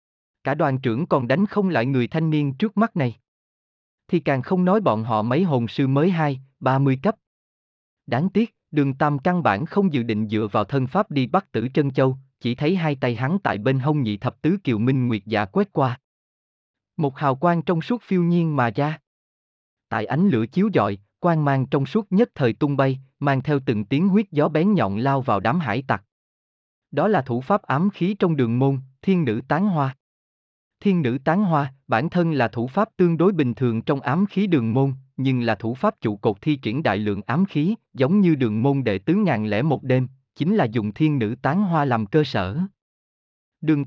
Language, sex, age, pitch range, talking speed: Vietnamese, male, 20-39, 115-165 Hz, 220 wpm